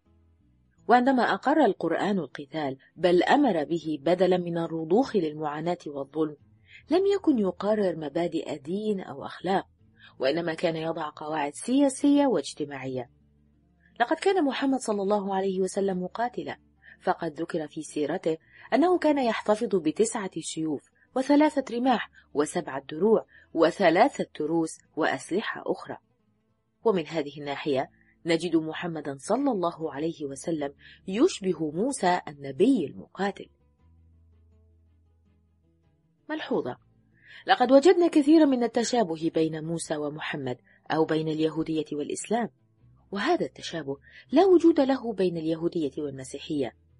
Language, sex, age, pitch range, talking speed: Arabic, female, 30-49, 140-215 Hz, 105 wpm